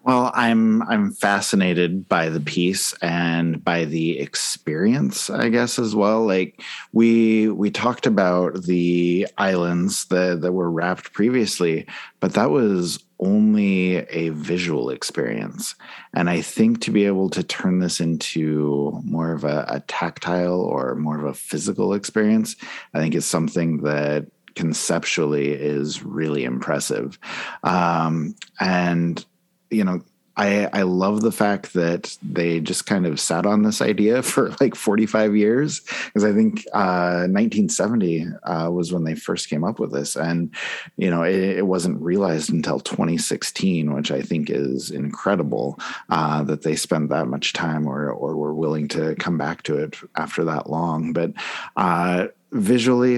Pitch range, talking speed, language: 80-105 Hz, 155 wpm, English